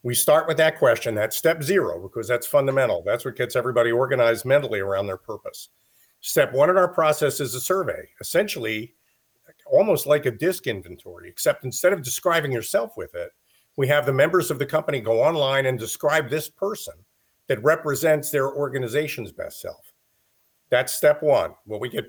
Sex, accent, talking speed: male, American, 180 wpm